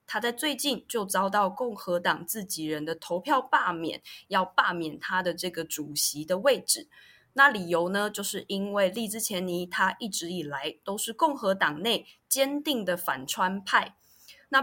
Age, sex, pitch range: 20-39, female, 170-235 Hz